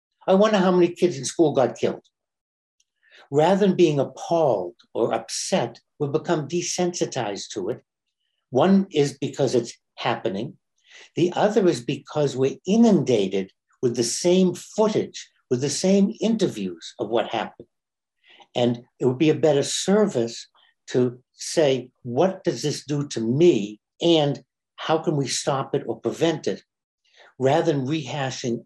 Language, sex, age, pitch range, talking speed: English, male, 60-79, 120-175 Hz, 145 wpm